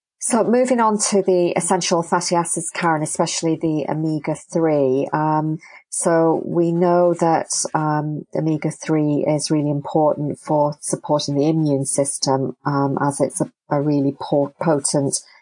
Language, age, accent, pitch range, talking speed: English, 40-59, British, 150-170 Hz, 145 wpm